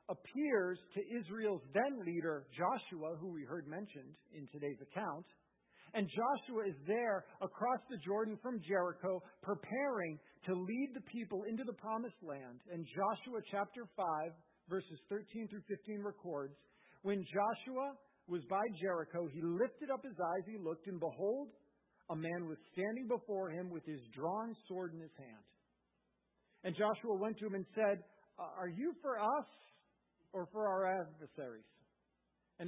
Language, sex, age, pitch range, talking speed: English, male, 50-69, 150-210 Hz, 150 wpm